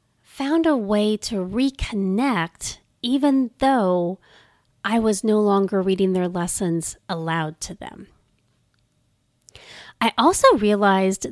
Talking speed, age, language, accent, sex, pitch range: 105 wpm, 30-49, English, American, female, 190-250 Hz